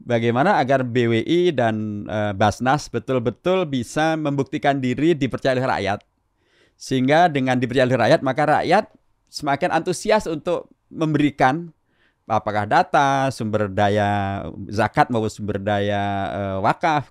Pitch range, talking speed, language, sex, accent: 110-145 Hz, 120 wpm, Indonesian, male, native